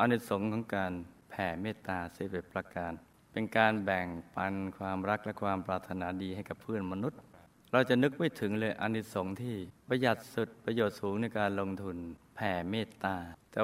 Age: 60-79